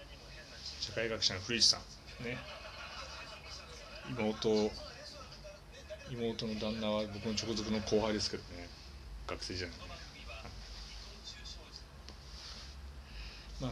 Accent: native